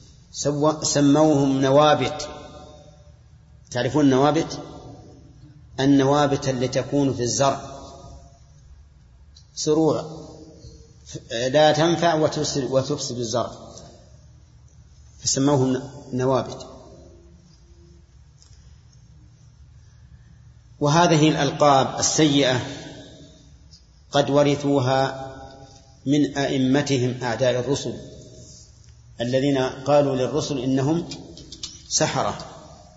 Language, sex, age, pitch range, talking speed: Arabic, male, 40-59, 130-150 Hz, 55 wpm